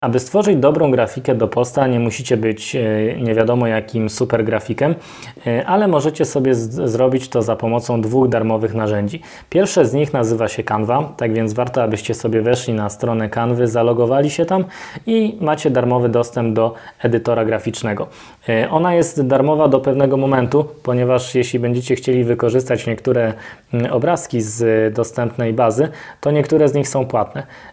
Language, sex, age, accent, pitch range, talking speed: Polish, male, 20-39, native, 115-140 Hz, 155 wpm